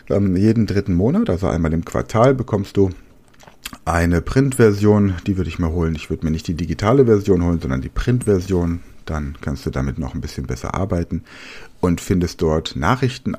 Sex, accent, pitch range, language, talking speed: male, German, 75-100 Hz, German, 180 wpm